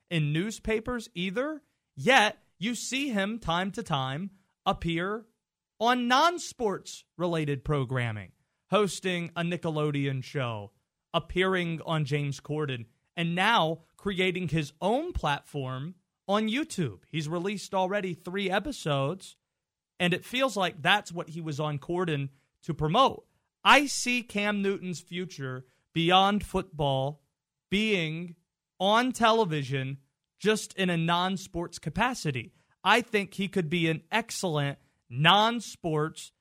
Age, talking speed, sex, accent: 30-49, 115 wpm, male, American